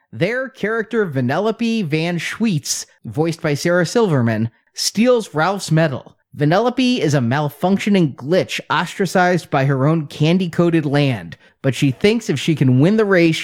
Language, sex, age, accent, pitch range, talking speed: English, male, 30-49, American, 145-195 Hz, 145 wpm